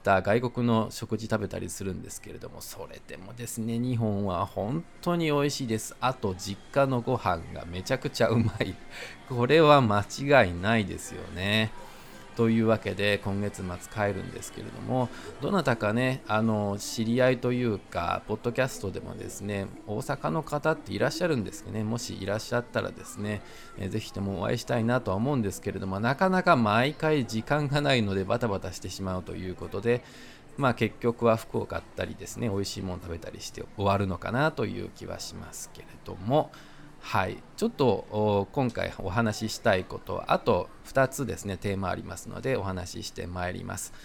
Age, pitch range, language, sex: 20-39, 100-130 Hz, Japanese, male